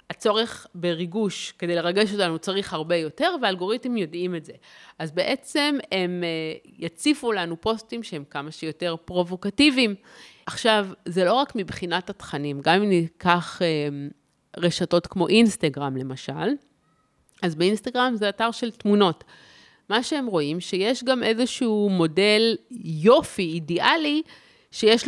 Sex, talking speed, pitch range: female, 120 wpm, 170-225 Hz